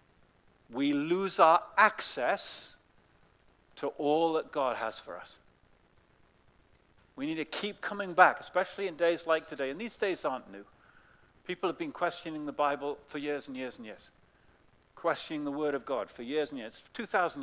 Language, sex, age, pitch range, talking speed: English, male, 50-69, 145-205 Hz, 170 wpm